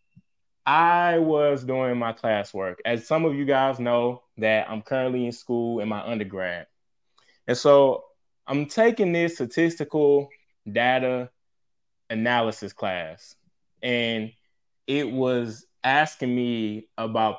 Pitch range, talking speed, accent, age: 120-165 Hz, 115 wpm, American, 20-39